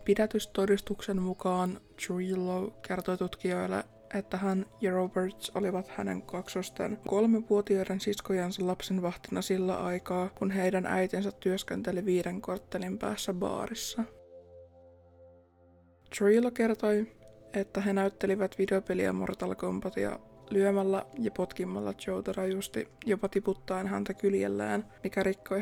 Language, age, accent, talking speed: Finnish, 20-39, native, 105 wpm